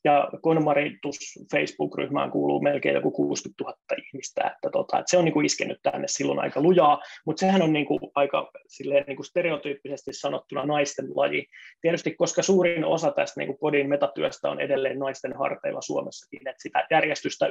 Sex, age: male, 20-39